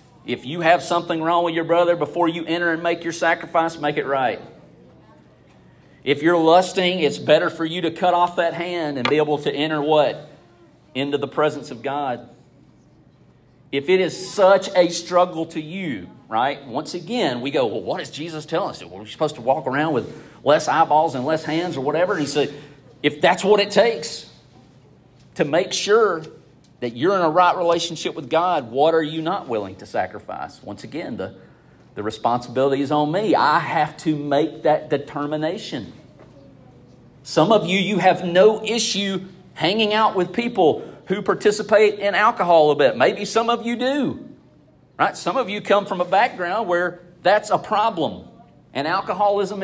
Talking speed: 185 wpm